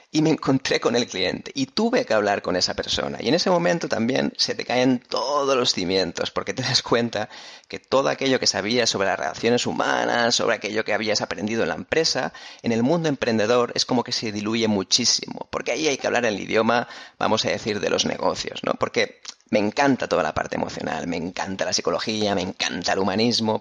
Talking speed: 215 wpm